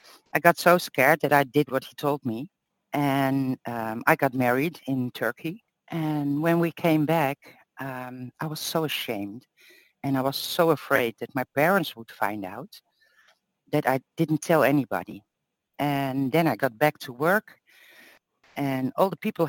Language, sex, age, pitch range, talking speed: English, female, 60-79, 135-165 Hz, 170 wpm